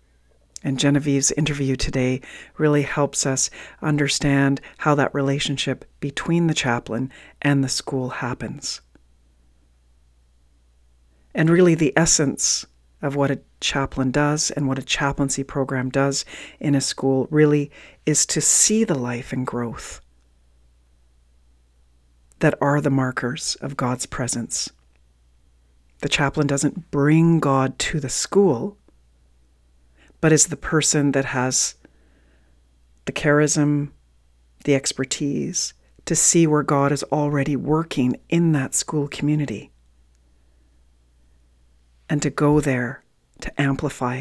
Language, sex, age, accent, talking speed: English, female, 40-59, American, 115 wpm